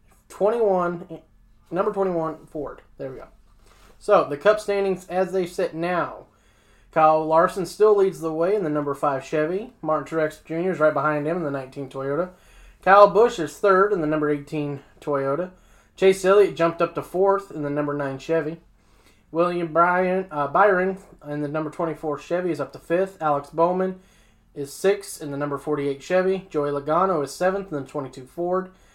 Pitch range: 145-185 Hz